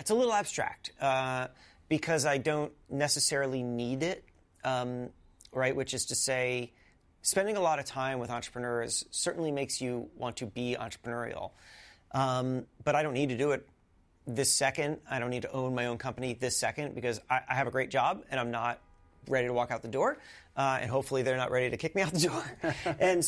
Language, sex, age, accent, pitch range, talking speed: English, male, 30-49, American, 125-150 Hz, 205 wpm